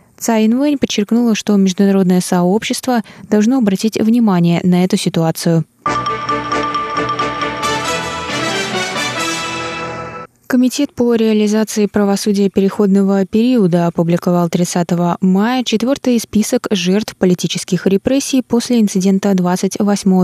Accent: native